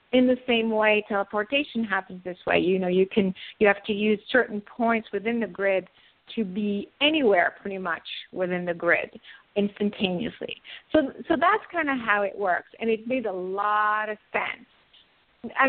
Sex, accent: female, American